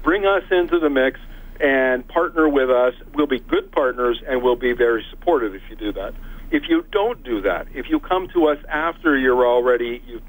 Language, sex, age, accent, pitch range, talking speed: English, male, 50-69, American, 120-145 Hz, 210 wpm